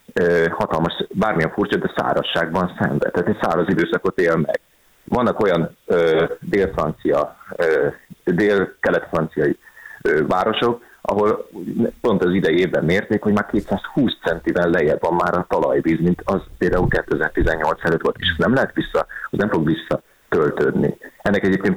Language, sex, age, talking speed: Hungarian, male, 30-49, 140 wpm